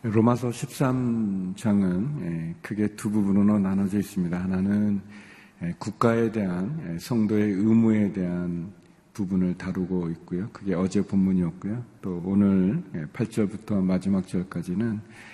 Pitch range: 90-115 Hz